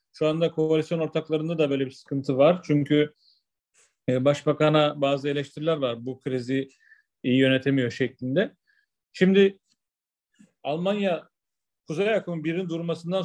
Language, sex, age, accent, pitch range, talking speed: Turkish, male, 40-59, native, 145-175 Hz, 120 wpm